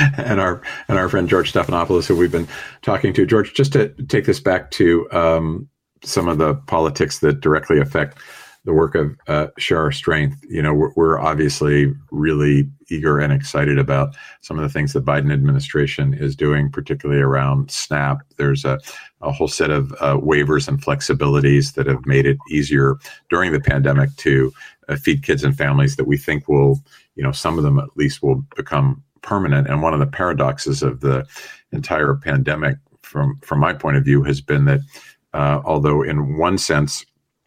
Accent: American